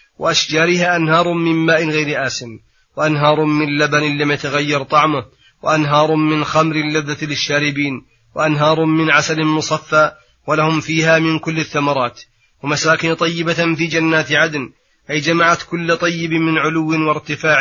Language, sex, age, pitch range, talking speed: Arabic, male, 30-49, 145-165 Hz, 130 wpm